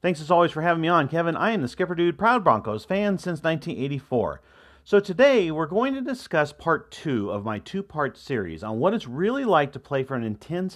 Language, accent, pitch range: English, American, 120-175 Hz